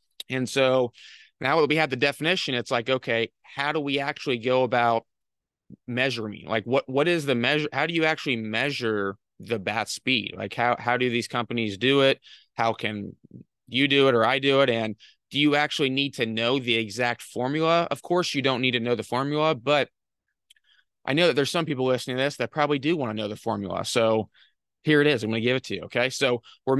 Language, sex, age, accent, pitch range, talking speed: English, male, 20-39, American, 115-140 Hz, 225 wpm